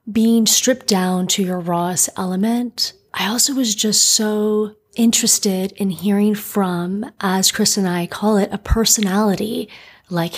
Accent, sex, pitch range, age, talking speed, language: American, female, 190-225 Hz, 30-49, 145 wpm, English